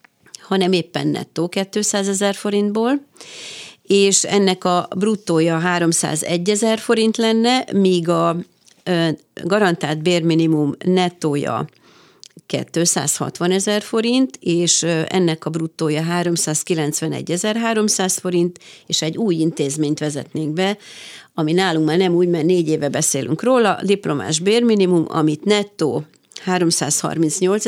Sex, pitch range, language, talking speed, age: female, 160-195 Hz, Hungarian, 110 wpm, 40-59